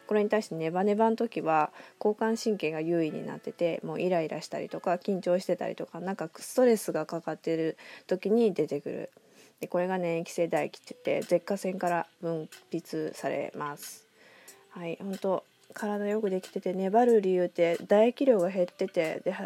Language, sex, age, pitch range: Japanese, female, 20-39, 175-210 Hz